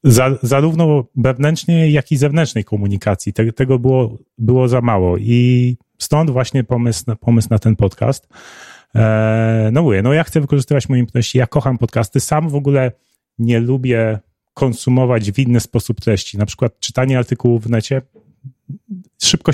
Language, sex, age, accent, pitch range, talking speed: Polish, male, 30-49, native, 110-130 Hz, 145 wpm